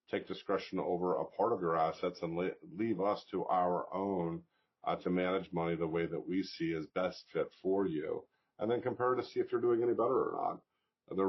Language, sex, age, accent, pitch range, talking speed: English, male, 50-69, American, 85-95 Hz, 220 wpm